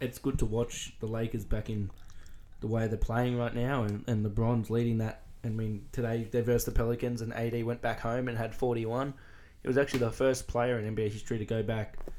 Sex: male